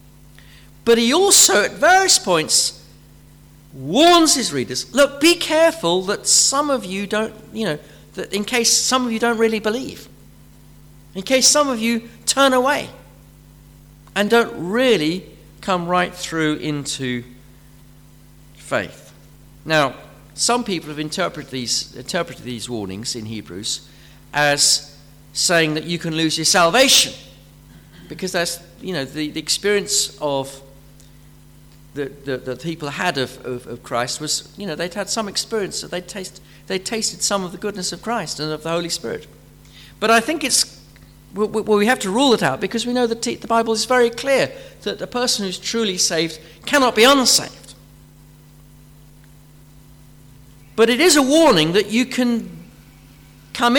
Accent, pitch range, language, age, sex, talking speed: British, 145-230 Hz, English, 50-69, male, 155 wpm